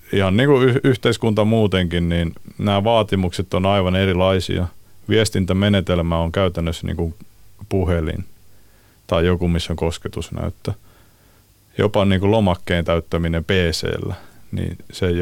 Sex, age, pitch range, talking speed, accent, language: male, 30-49, 90-105 Hz, 120 wpm, native, Finnish